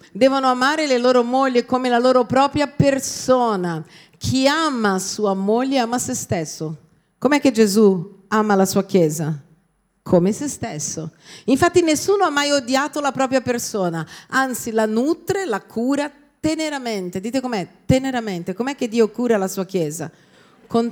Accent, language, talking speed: native, Italian, 150 wpm